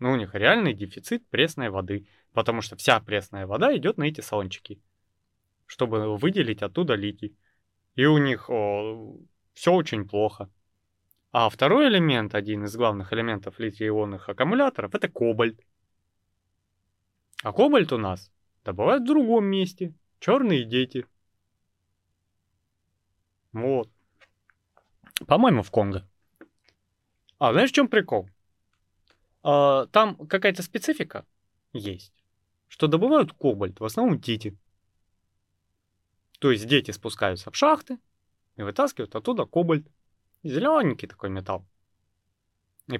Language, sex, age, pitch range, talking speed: Russian, male, 20-39, 95-145 Hz, 115 wpm